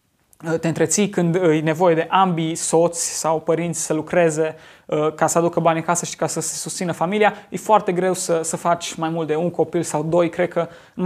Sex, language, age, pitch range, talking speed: male, Romanian, 20-39, 160-190 Hz, 215 wpm